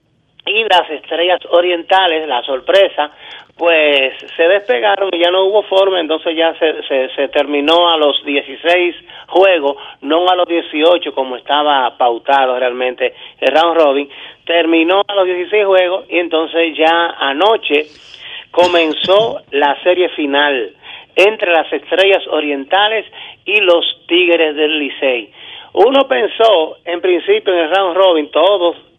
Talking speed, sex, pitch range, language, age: 135 wpm, male, 155-190 Hz, Spanish, 40-59